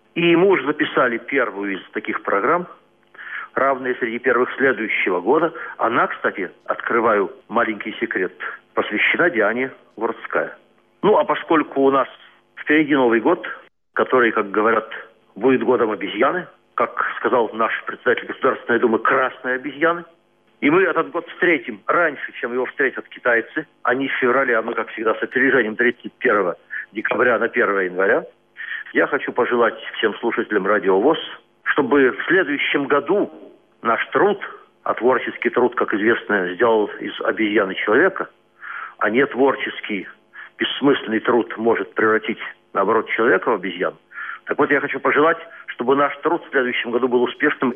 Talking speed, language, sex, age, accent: 140 wpm, Russian, male, 50-69, native